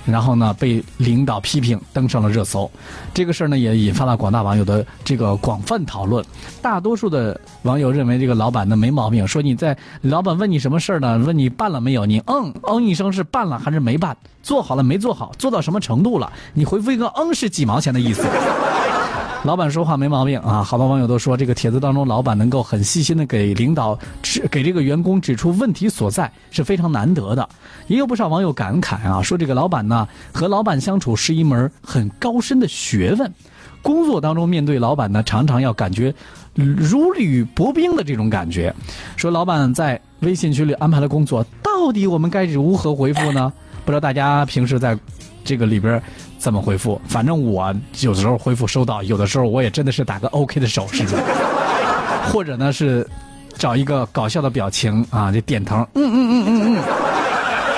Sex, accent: male, native